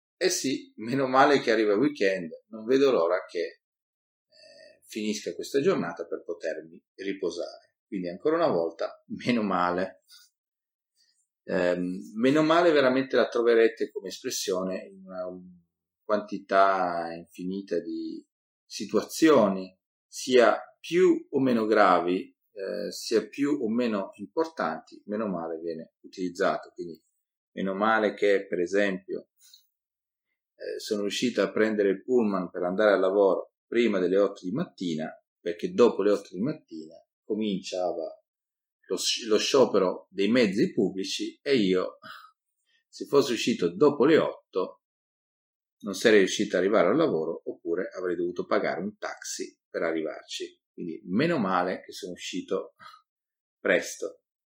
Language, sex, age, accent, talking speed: Italian, male, 40-59, native, 130 wpm